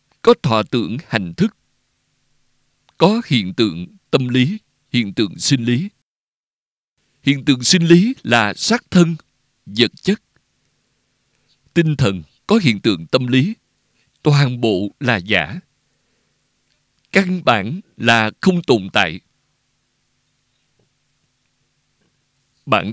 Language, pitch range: Vietnamese, 125-160 Hz